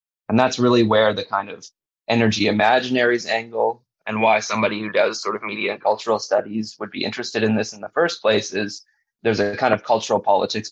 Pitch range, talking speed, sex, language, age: 110-120 Hz, 205 wpm, male, English, 20-39